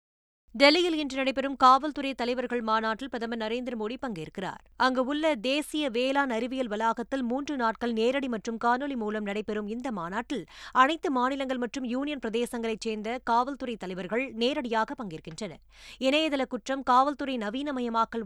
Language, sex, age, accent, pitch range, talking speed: Tamil, female, 20-39, native, 220-270 Hz, 130 wpm